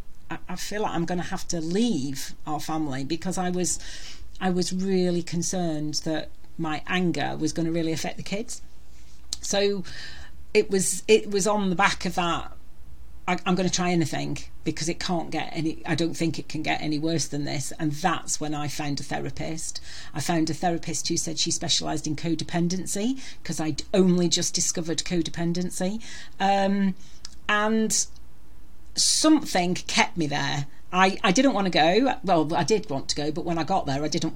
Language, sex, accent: English, female, British